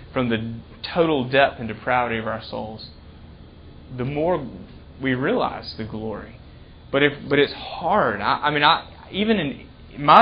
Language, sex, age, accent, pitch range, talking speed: English, male, 30-49, American, 110-135 Hz, 160 wpm